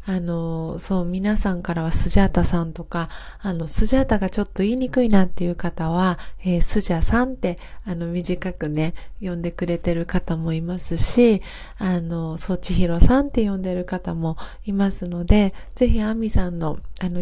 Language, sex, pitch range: Japanese, female, 175-215 Hz